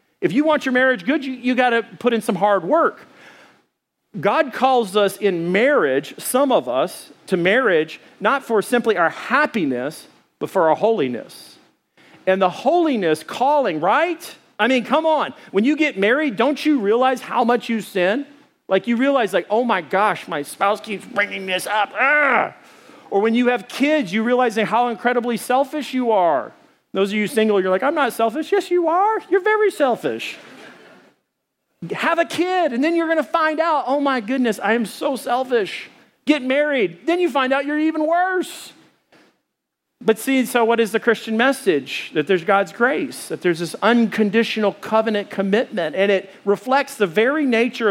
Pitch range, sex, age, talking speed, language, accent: 205-285 Hz, male, 40-59, 180 wpm, English, American